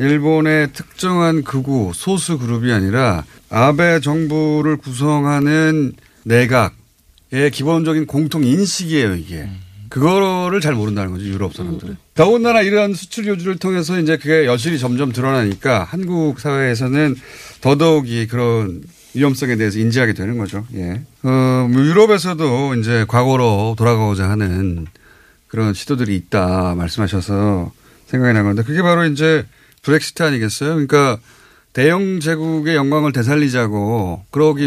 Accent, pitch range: native, 115-160 Hz